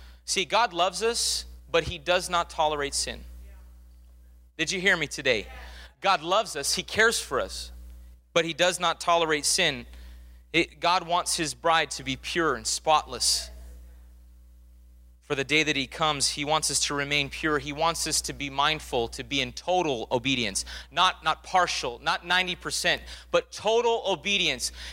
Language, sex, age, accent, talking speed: English, male, 30-49, American, 165 wpm